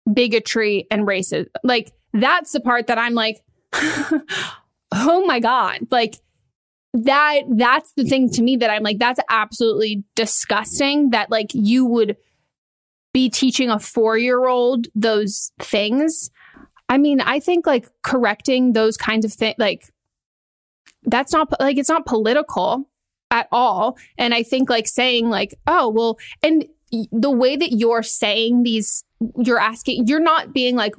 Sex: female